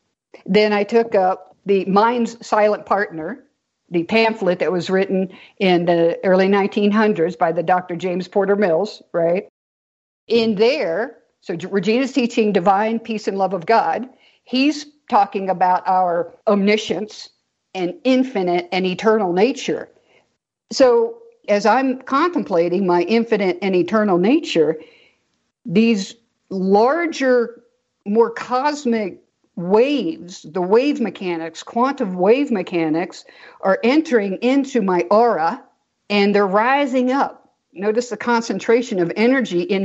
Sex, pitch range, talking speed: female, 185-240 Hz, 120 wpm